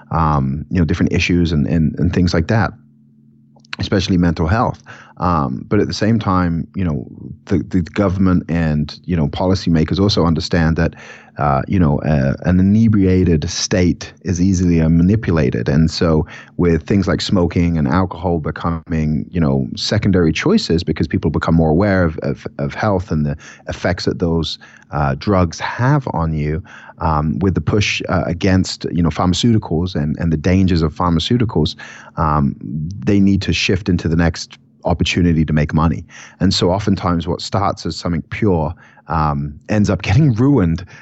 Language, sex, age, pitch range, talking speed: English, male, 30-49, 80-95 Hz, 165 wpm